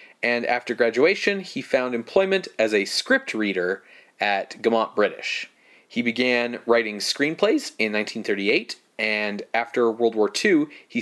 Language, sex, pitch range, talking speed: English, male, 110-150 Hz, 135 wpm